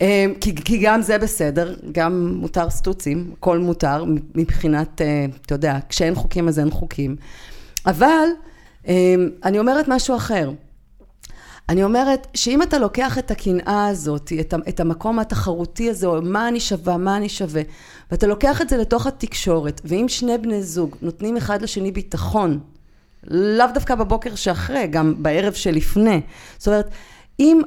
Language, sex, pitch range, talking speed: Hebrew, female, 160-220 Hz, 145 wpm